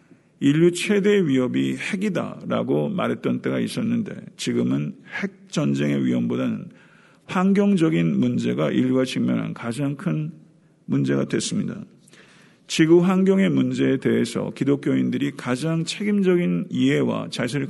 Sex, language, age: male, Korean, 50-69